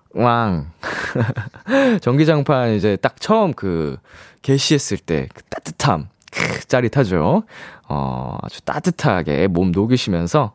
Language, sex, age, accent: Korean, male, 20-39, native